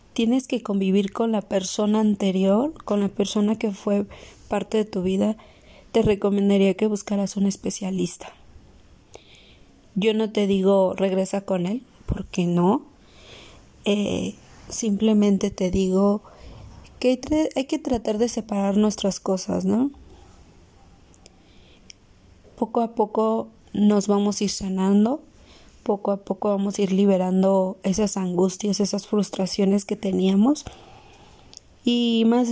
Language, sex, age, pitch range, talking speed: Spanish, female, 30-49, 190-220 Hz, 125 wpm